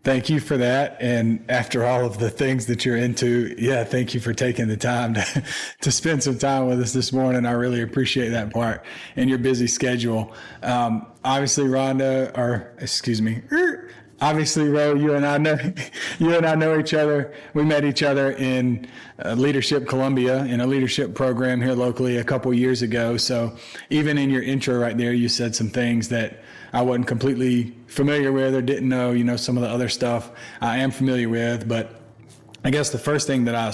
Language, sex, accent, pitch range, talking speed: English, male, American, 120-135 Hz, 200 wpm